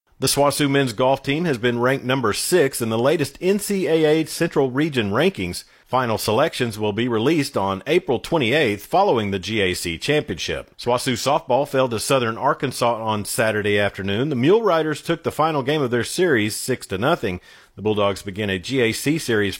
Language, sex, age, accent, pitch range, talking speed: English, male, 40-59, American, 105-145 Hz, 175 wpm